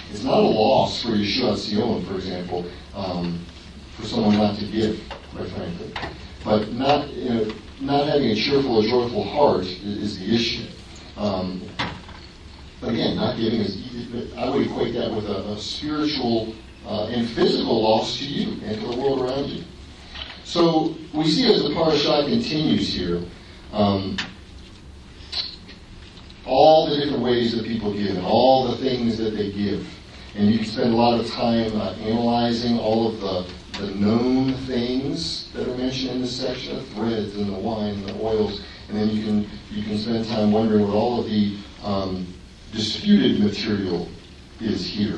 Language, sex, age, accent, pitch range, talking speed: English, male, 40-59, American, 95-120 Hz, 175 wpm